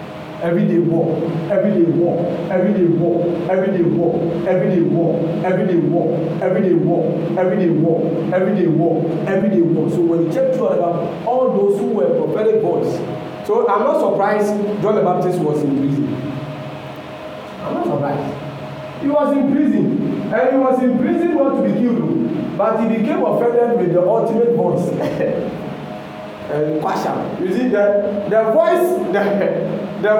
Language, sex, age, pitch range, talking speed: English, male, 40-59, 155-210 Hz, 140 wpm